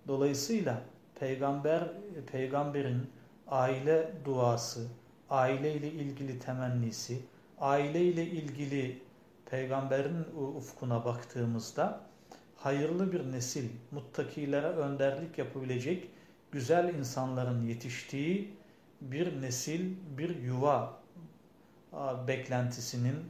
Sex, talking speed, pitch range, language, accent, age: male, 75 wpm, 125-160 Hz, Turkish, native, 50-69